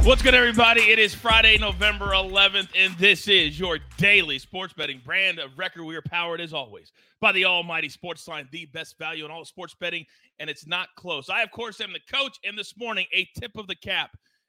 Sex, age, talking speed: male, 30-49, 220 wpm